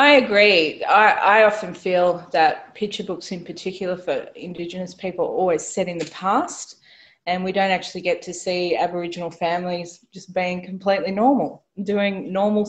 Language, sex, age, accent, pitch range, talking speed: English, female, 20-39, Australian, 185-245 Hz, 165 wpm